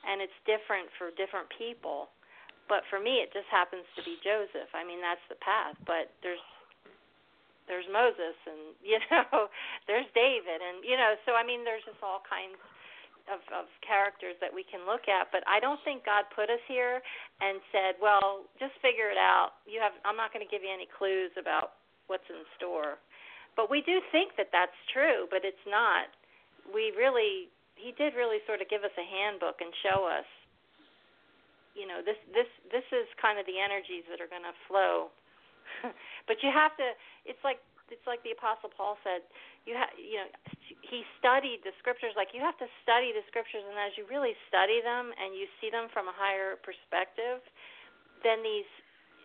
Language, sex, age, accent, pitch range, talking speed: English, female, 40-59, American, 195-265 Hz, 190 wpm